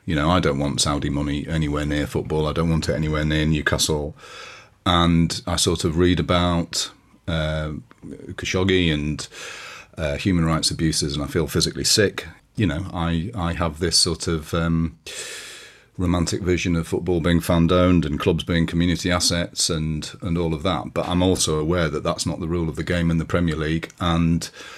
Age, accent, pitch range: 40-59, British, 80-90 Hz